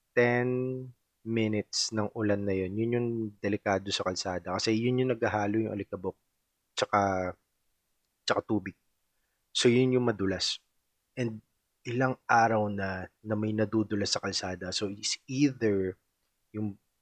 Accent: native